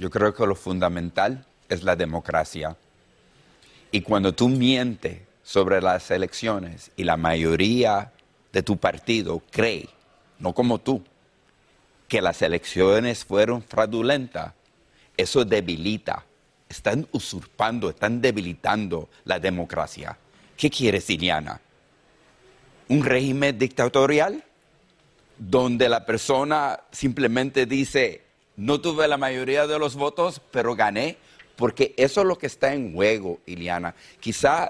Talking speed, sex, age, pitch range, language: 120 wpm, male, 50-69, 110-155 Hz, Spanish